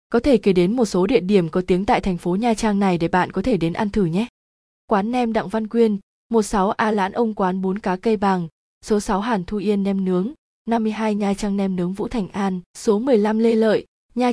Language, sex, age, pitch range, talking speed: Vietnamese, female, 20-39, 185-230 Hz, 240 wpm